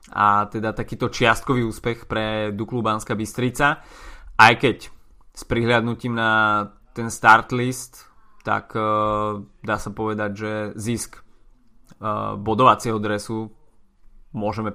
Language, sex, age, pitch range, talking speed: Slovak, male, 20-39, 105-115 Hz, 100 wpm